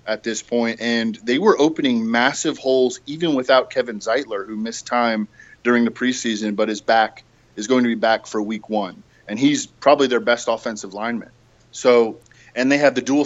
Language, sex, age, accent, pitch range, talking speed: English, male, 20-39, American, 110-125 Hz, 195 wpm